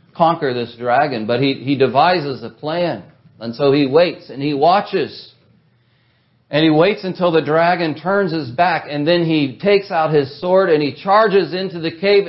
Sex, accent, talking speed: male, American, 185 wpm